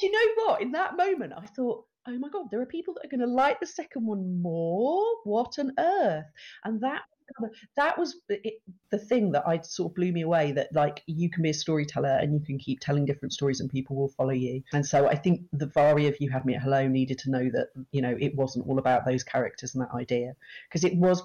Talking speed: 250 wpm